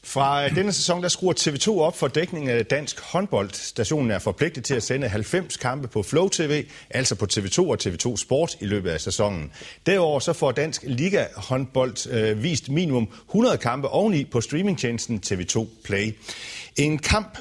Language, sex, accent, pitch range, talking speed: Danish, male, native, 100-150 Hz, 170 wpm